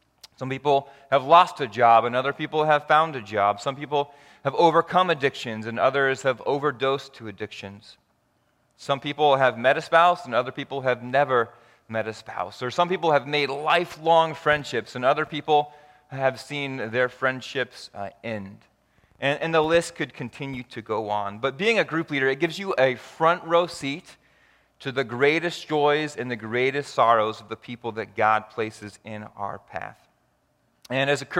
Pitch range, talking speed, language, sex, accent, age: 115-155 Hz, 175 wpm, English, male, American, 30-49